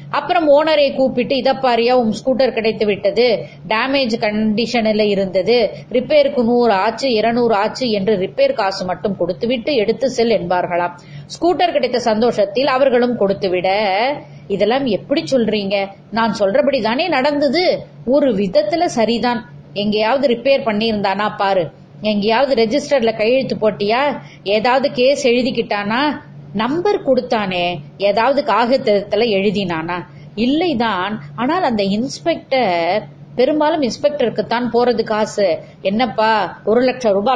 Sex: female